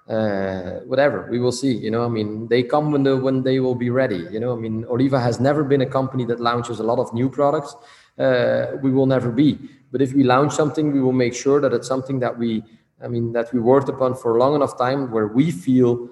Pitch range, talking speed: 120-135 Hz, 255 wpm